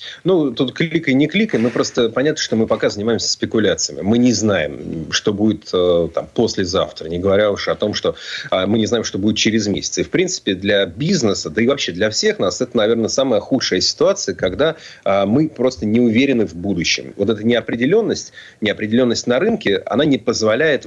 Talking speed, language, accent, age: 195 wpm, Russian, native, 30-49